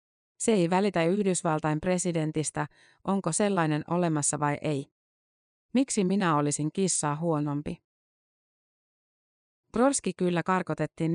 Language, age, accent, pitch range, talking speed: Finnish, 30-49, native, 155-195 Hz, 95 wpm